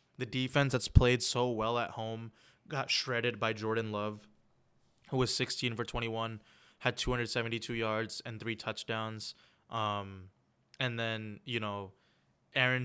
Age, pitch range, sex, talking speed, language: 20-39, 110-125 Hz, male, 140 wpm, English